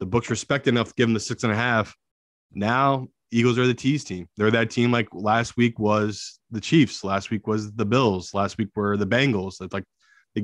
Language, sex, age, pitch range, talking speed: English, male, 20-39, 105-125 Hz, 230 wpm